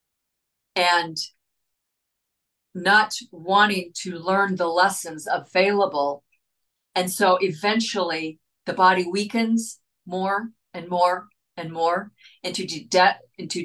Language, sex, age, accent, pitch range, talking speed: English, female, 50-69, American, 170-205 Hz, 95 wpm